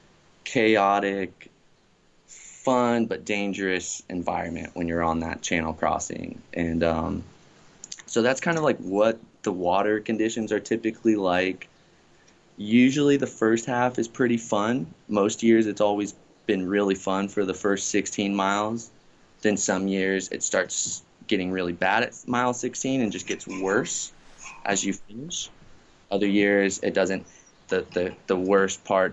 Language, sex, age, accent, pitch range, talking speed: English, male, 20-39, American, 95-115 Hz, 145 wpm